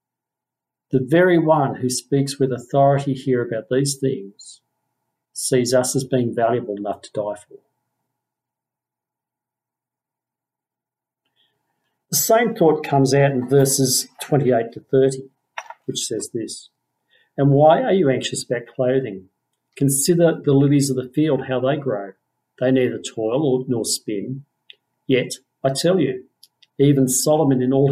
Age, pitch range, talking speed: 50-69, 125-155 Hz, 135 wpm